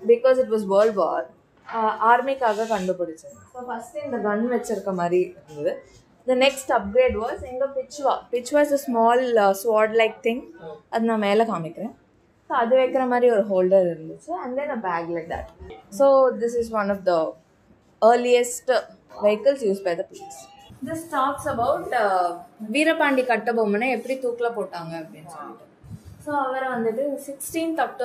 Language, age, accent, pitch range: Tamil, 20-39, native, 205-275 Hz